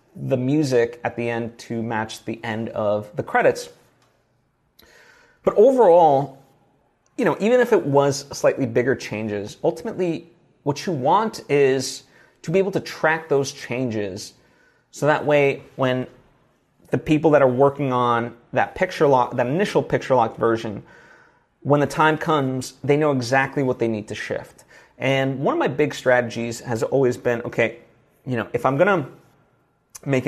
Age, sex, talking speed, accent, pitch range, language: 30-49, male, 160 wpm, American, 125-155 Hz, English